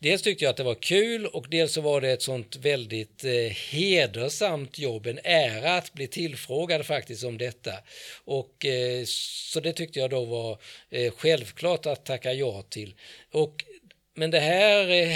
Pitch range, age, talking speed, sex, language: 120-160 Hz, 50-69, 155 wpm, male, Swedish